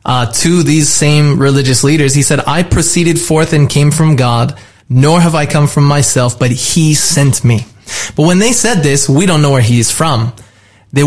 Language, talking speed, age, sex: English, 205 wpm, 20-39, male